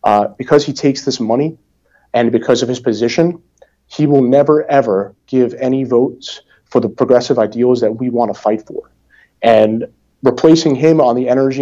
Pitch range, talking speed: 110-130 Hz, 175 wpm